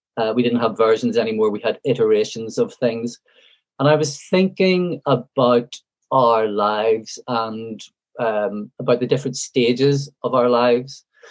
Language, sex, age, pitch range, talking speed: English, male, 40-59, 110-150 Hz, 145 wpm